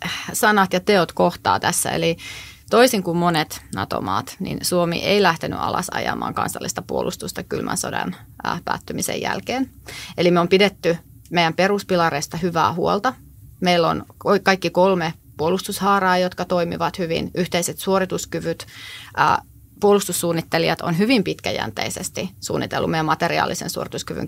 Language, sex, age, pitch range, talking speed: Finnish, female, 30-49, 165-190 Hz, 125 wpm